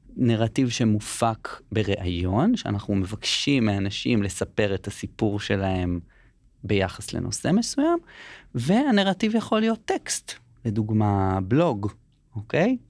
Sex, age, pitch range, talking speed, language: male, 30-49, 110-155 Hz, 95 wpm, Hebrew